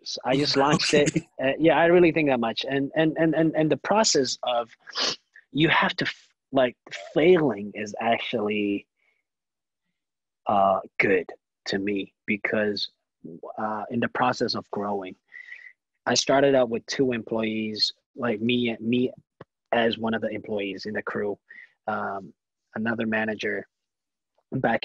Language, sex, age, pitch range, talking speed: English, male, 20-39, 105-130 Hz, 145 wpm